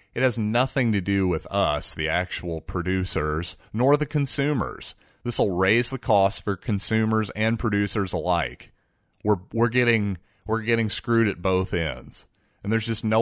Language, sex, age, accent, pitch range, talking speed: English, male, 30-49, American, 85-110 Hz, 165 wpm